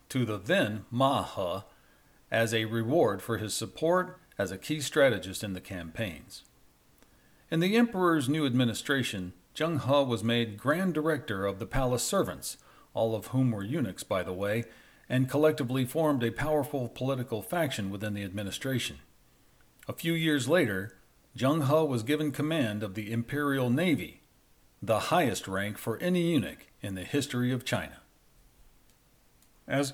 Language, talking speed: English, 150 wpm